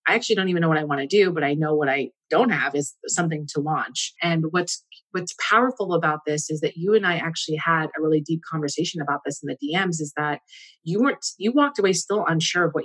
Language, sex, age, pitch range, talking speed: English, female, 30-49, 155-195 Hz, 250 wpm